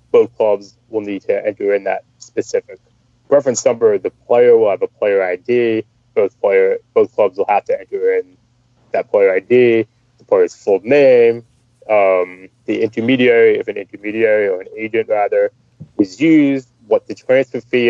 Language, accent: English, American